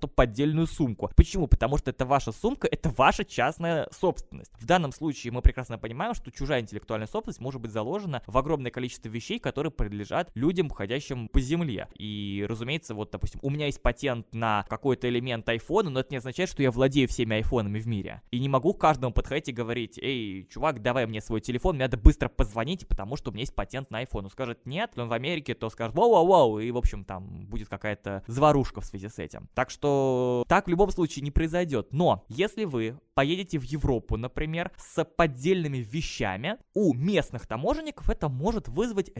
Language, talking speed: Russian, 195 wpm